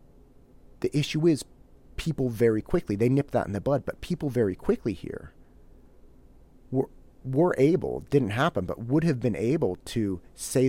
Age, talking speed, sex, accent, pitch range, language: 30-49, 165 wpm, male, American, 110-145 Hz, English